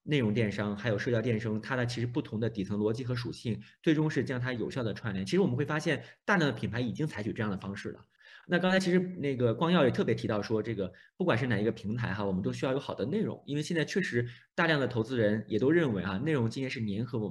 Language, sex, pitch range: Chinese, male, 105-145 Hz